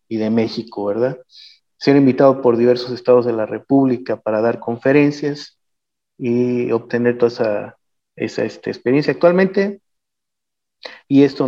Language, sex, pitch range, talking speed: Spanish, male, 110-135 Hz, 130 wpm